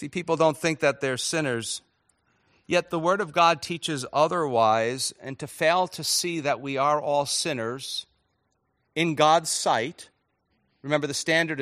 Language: English